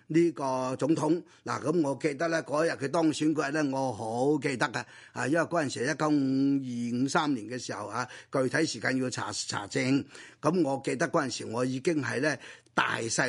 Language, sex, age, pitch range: Chinese, male, 30-49, 130-165 Hz